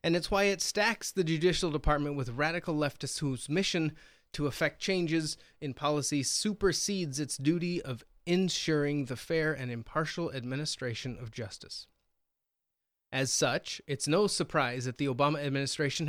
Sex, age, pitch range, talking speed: male, 30-49, 135-175 Hz, 145 wpm